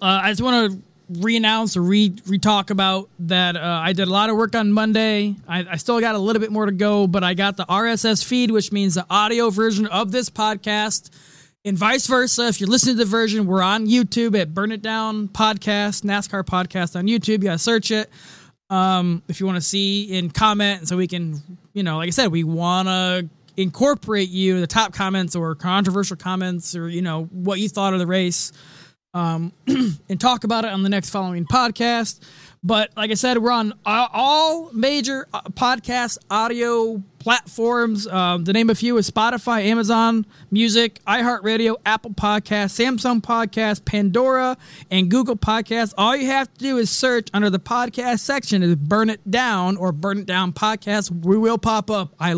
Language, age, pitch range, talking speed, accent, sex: English, 20-39, 185-225 Hz, 195 wpm, American, male